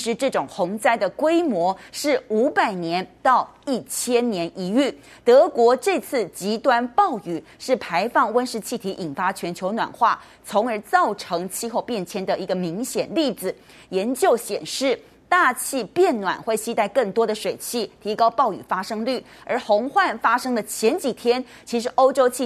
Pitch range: 200-275 Hz